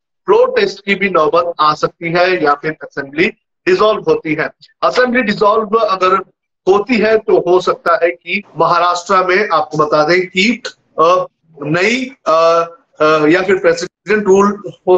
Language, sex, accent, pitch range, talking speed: Hindi, male, native, 165-195 Hz, 135 wpm